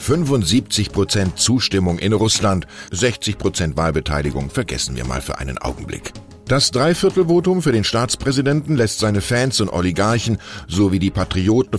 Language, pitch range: German, 90-125 Hz